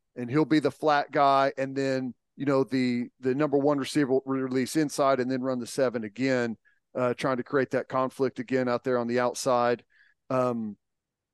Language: English